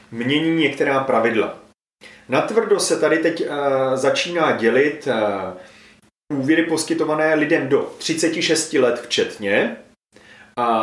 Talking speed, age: 100 wpm, 30-49